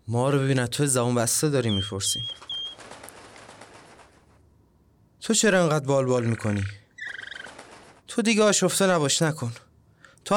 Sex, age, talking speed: male, 20-39, 120 wpm